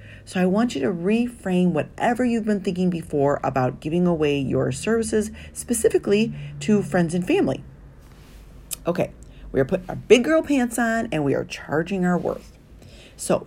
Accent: American